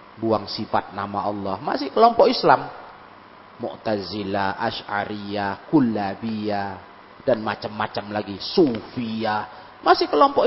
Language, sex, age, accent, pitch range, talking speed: Indonesian, male, 40-59, native, 100-140 Hz, 90 wpm